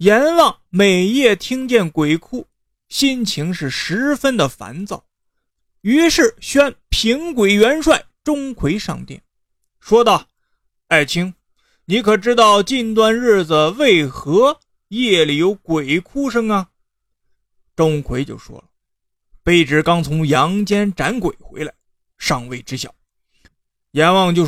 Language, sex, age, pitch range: Chinese, male, 30-49, 175-265 Hz